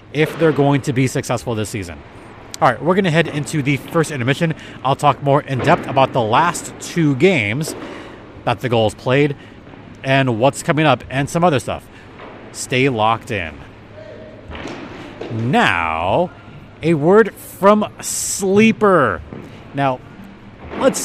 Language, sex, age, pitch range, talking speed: English, male, 30-49, 125-180 Hz, 140 wpm